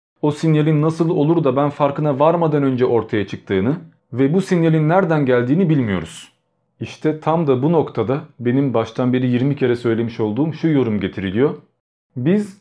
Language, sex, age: Turkish, male, 40-59